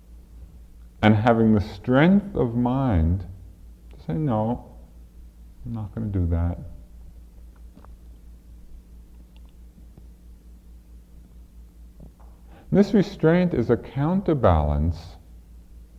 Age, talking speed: 40-59, 75 wpm